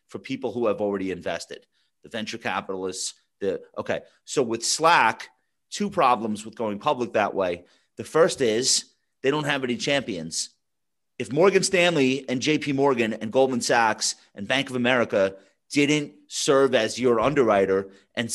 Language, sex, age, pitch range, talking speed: English, male, 30-49, 105-135 Hz, 155 wpm